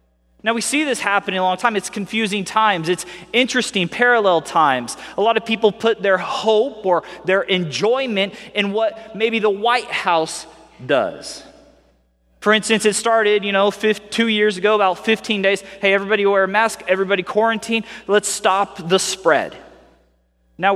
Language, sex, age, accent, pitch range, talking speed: English, male, 20-39, American, 165-215 Hz, 165 wpm